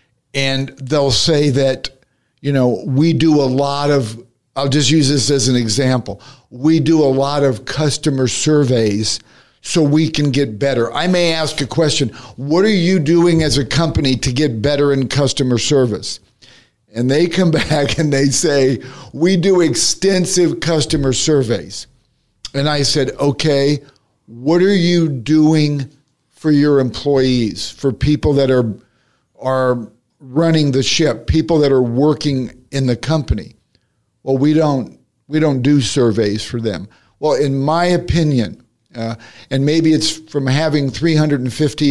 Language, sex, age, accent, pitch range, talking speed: English, male, 50-69, American, 125-155 Hz, 150 wpm